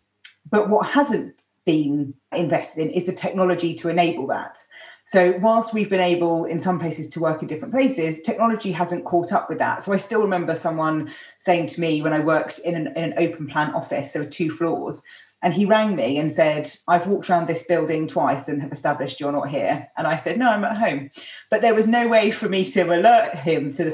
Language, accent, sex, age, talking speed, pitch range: English, British, female, 30-49, 225 wpm, 160-210 Hz